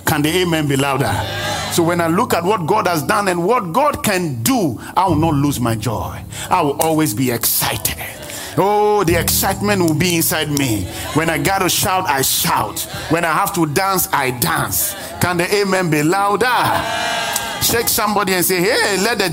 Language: English